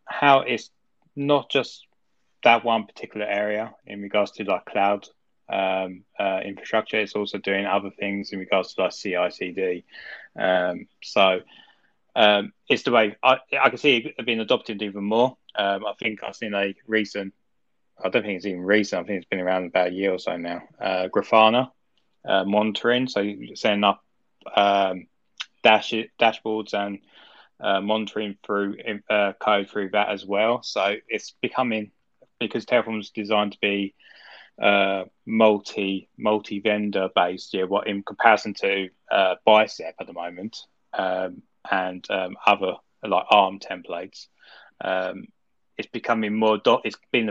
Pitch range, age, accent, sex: 100-110 Hz, 10-29, British, male